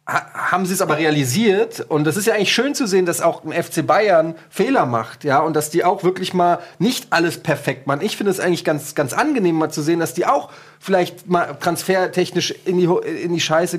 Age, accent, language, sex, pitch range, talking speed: 30-49, German, German, male, 145-175 Hz, 230 wpm